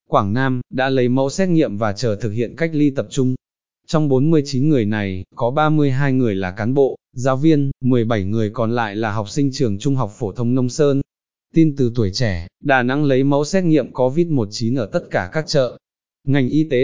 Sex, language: male, Vietnamese